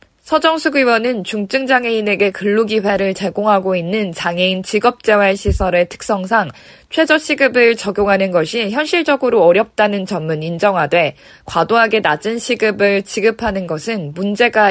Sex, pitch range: female, 190-255 Hz